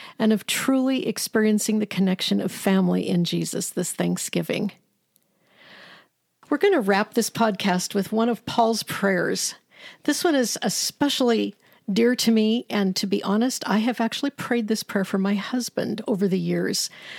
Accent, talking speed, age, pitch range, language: American, 160 wpm, 50-69, 195-255 Hz, English